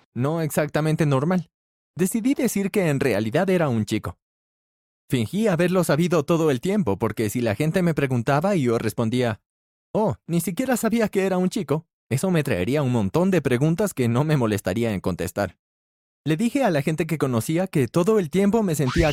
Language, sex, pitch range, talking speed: Spanish, male, 120-185 Hz, 190 wpm